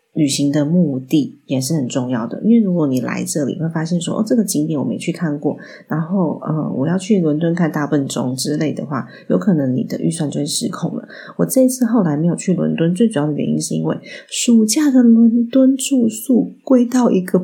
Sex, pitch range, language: female, 155-225 Hz, Chinese